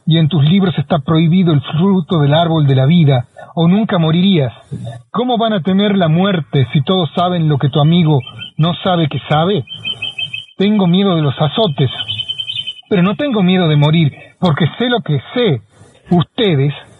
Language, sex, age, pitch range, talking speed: Spanish, male, 40-59, 145-190 Hz, 175 wpm